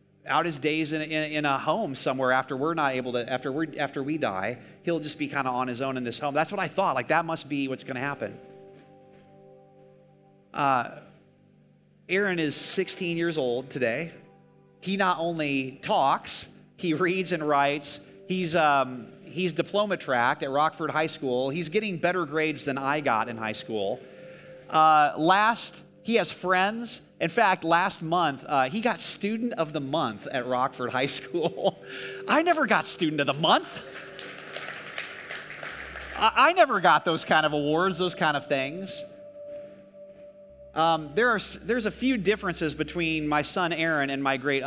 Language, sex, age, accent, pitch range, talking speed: English, male, 30-49, American, 130-180 Hz, 170 wpm